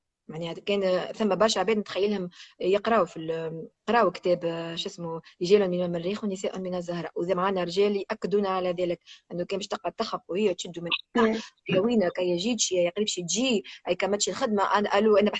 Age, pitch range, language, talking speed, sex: 20-39, 185-235 Hz, English, 120 wpm, female